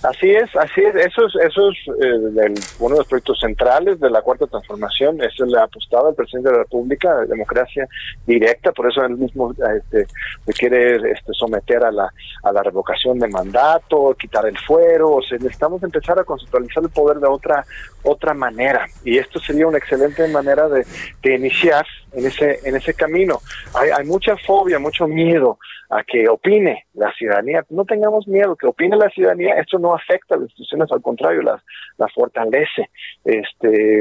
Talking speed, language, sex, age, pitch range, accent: 185 wpm, Spanish, male, 40-59, 125-195 Hz, Mexican